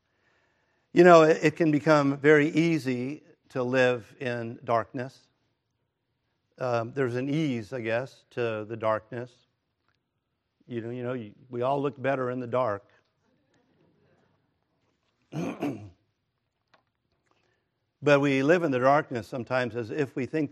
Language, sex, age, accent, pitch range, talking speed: English, male, 50-69, American, 120-150 Hz, 120 wpm